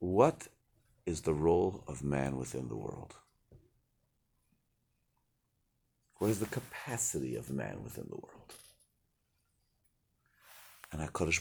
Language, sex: English, male